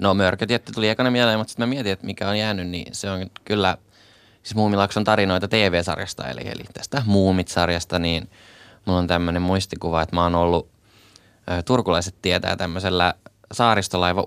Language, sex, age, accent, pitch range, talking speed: Finnish, male, 20-39, native, 85-100 Hz, 170 wpm